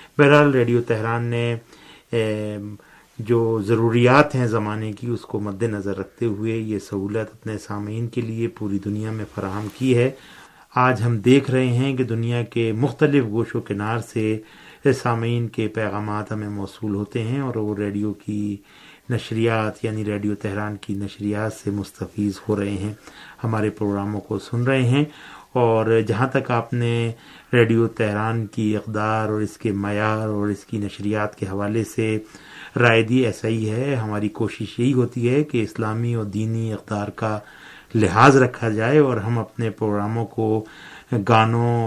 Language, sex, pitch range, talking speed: Urdu, male, 105-120 Hz, 160 wpm